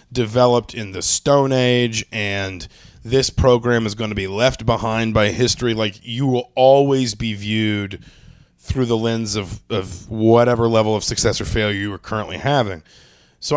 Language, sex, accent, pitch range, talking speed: English, male, American, 105-120 Hz, 170 wpm